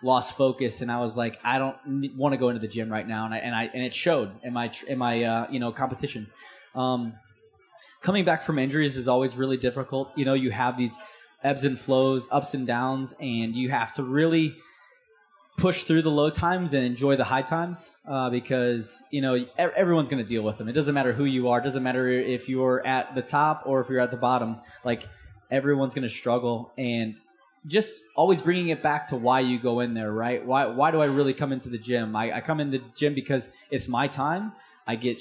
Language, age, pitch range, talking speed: English, 20-39, 125-150 Hz, 230 wpm